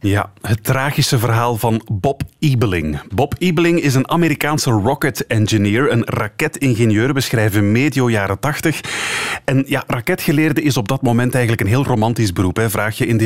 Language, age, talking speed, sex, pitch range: Dutch, 30-49, 165 wpm, male, 105-145 Hz